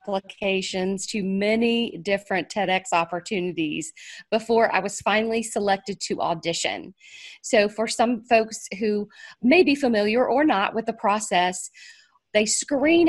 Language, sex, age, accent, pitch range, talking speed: English, female, 40-59, American, 190-235 Hz, 130 wpm